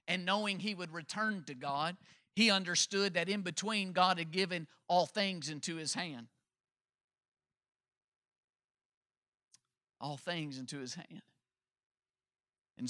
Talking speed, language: 120 wpm, English